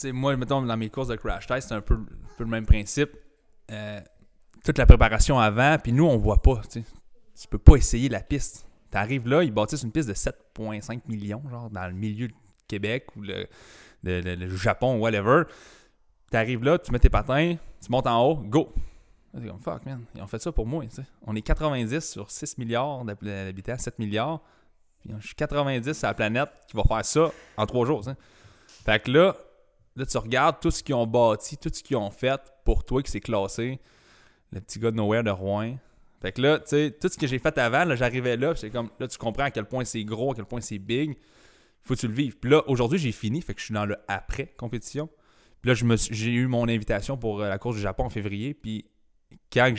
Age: 20-39